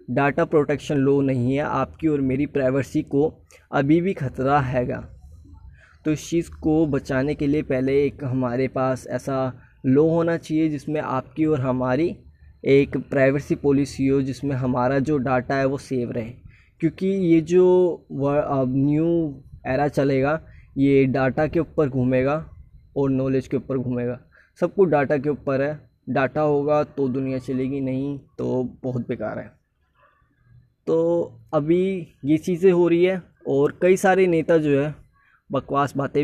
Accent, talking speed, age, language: native, 150 wpm, 20-39, Hindi